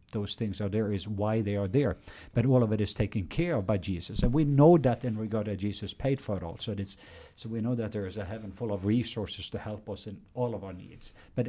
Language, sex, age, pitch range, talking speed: English, male, 50-69, 105-125 Hz, 280 wpm